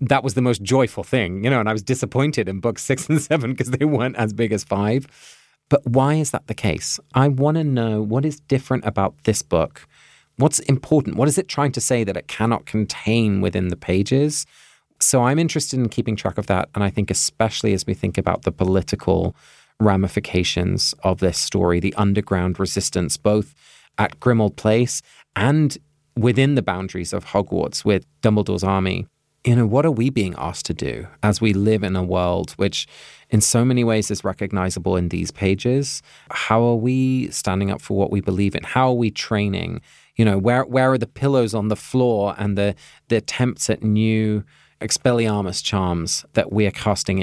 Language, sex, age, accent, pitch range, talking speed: English, male, 30-49, British, 95-130 Hz, 195 wpm